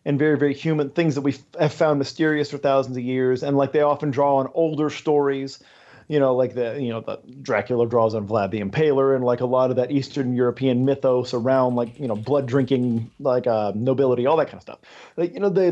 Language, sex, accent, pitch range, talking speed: English, male, American, 130-170 Hz, 235 wpm